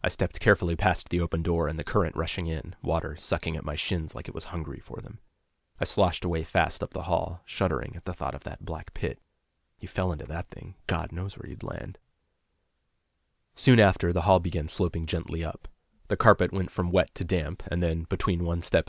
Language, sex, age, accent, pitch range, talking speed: English, male, 30-49, American, 80-95 Hz, 215 wpm